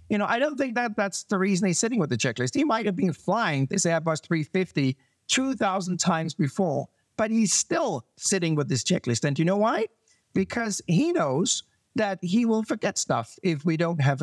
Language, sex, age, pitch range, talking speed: English, male, 50-69, 145-195 Hz, 205 wpm